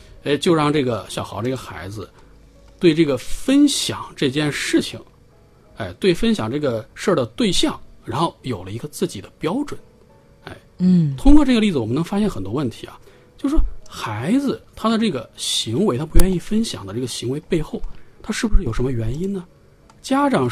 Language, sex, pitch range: Chinese, male, 115-195 Hz